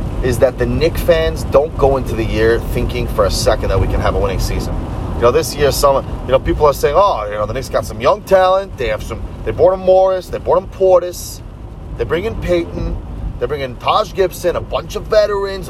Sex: male